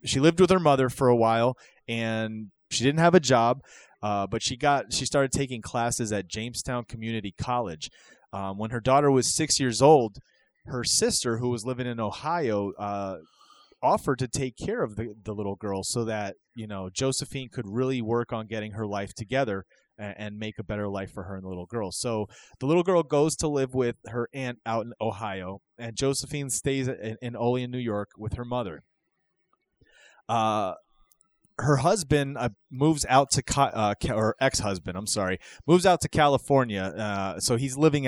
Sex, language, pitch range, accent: male, English, 105-135 Hz, American